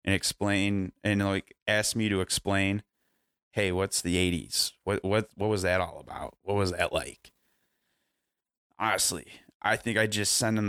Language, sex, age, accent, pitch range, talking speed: English, male, 20-39, American, 95-110 Hz, 170 wpm